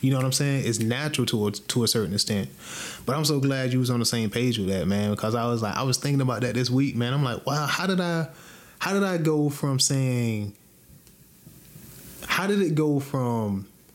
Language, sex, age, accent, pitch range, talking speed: English, male, 20-39, American, 120-145 Hz, 235 wpm